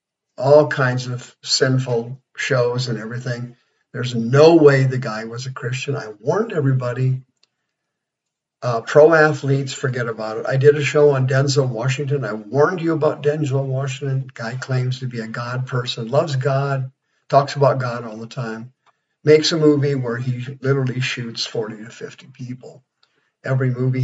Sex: male